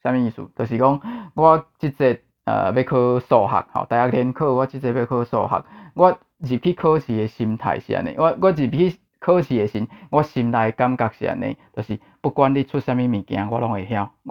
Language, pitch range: Chinese, 115-140 Hz